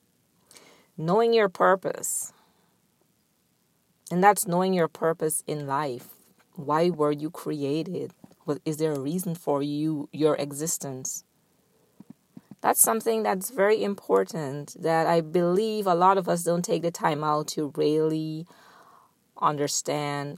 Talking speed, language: 125 wpm, English